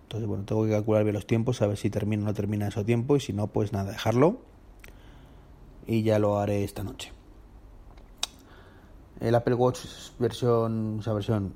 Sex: male